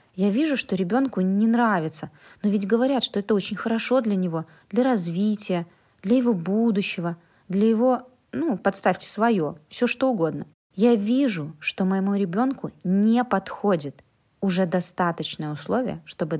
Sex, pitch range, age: female, 170-220 Hz, 20-39